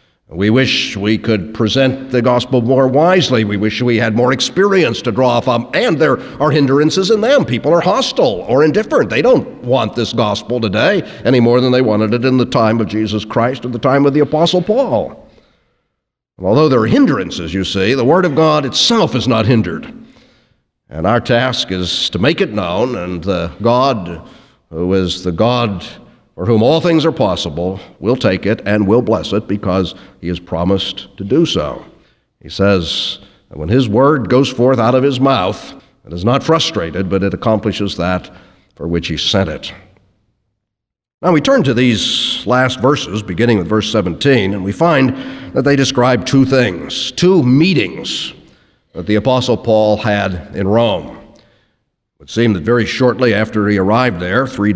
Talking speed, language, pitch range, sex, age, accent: 180 wpm, English, 100-130 Hz, male, 50-69, American